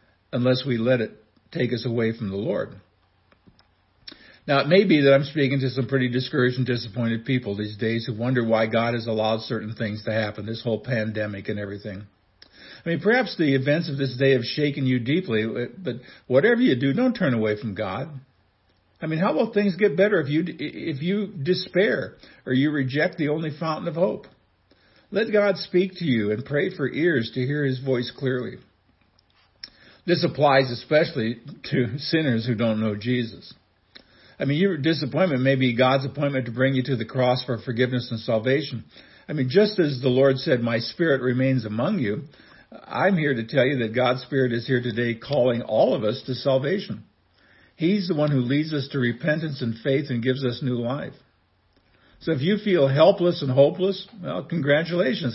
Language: English